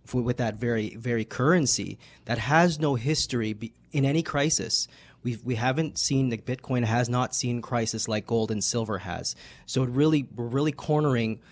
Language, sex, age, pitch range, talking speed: English, male, 30-49, 110-130 Hz, 180 wpm